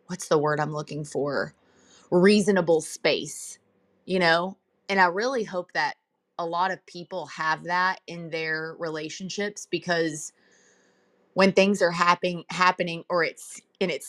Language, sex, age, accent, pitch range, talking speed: English, female, 20-39, American, 155-175 Hz, 140 wpm